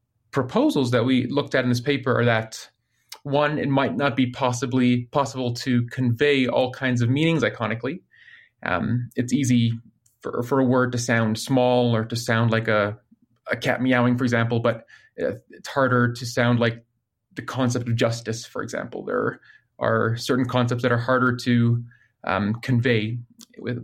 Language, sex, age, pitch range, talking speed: English, male, 30-49, 115-130 Hz, 170 wpm